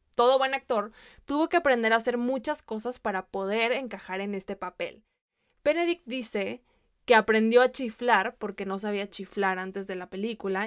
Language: Spanish